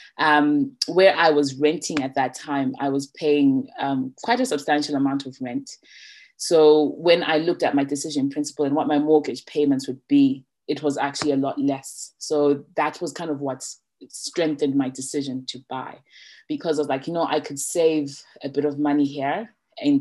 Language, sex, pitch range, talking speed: English, female, 140-160 Hz, 195 wpm